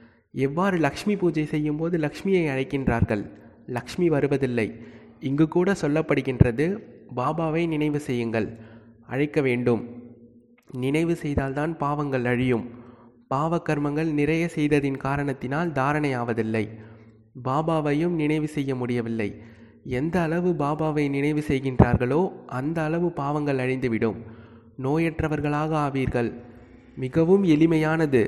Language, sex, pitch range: Tamil, male, 120-160 Hz